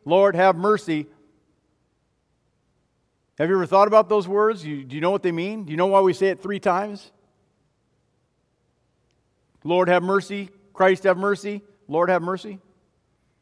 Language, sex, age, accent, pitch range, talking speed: English, male, 50-69, American, 145-190 Hz, 150 wpm